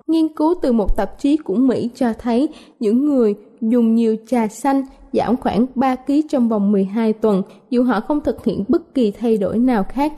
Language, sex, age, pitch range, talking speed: Vietnamese, female, 20-39, 225-285 Hz, 205 wpm